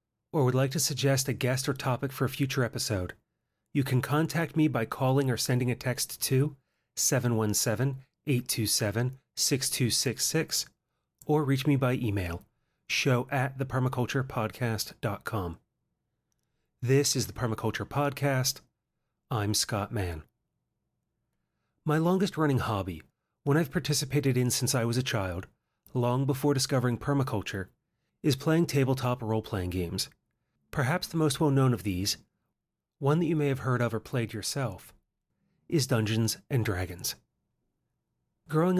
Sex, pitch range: male, 115-145 Hz